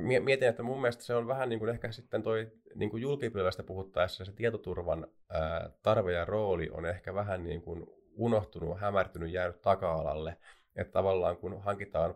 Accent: native